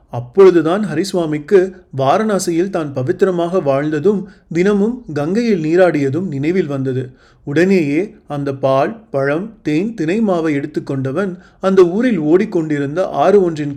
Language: Tamil